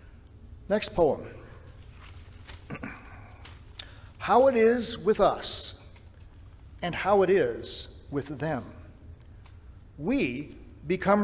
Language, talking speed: English, 80 wpm